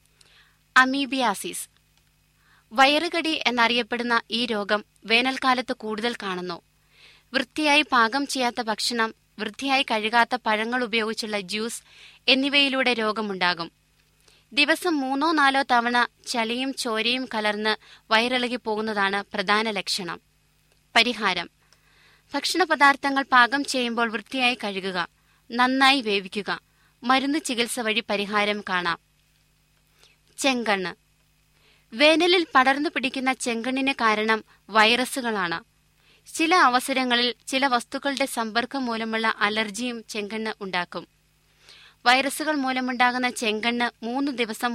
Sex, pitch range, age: female, 215-265 Hz, 20-39